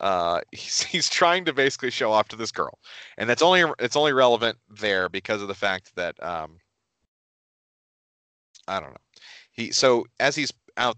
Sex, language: male, English